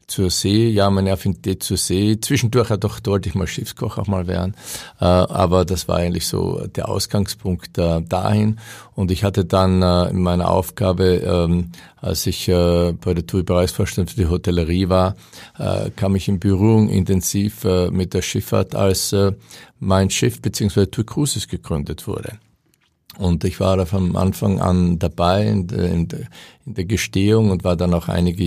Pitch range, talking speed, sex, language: 90-105 Hz, 160 wpm, male, German